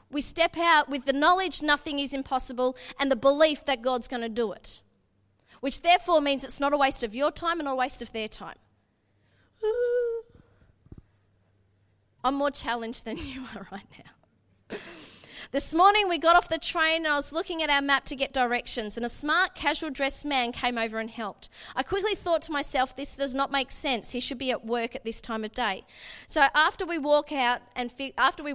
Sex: female